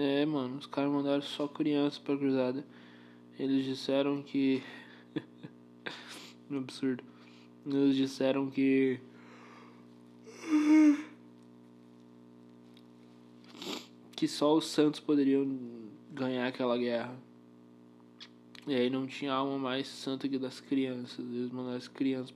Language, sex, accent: Portuguese, male, Brazilian